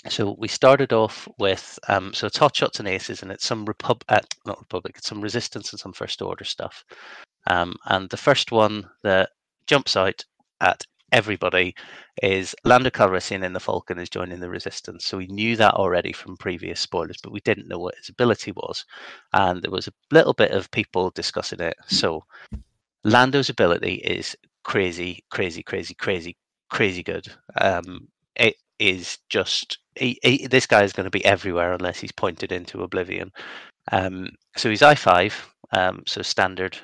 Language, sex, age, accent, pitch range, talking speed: English, male, 30-49, British, 95-120 Hz, 170 wpm